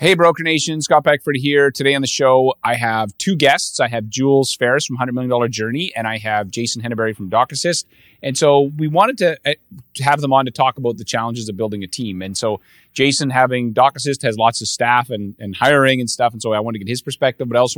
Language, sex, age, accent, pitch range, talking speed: English, male, 30-49, American, 110-135 Hz, 240 wpm